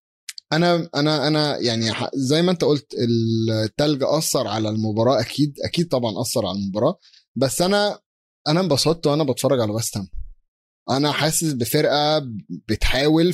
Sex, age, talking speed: male, 20-39, 135 wpm